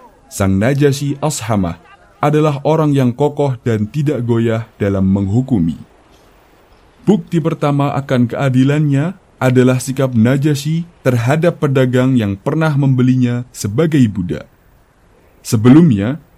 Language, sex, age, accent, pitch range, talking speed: Indonesian, male, 20-39, native, 110-150 Hz, 100 wpm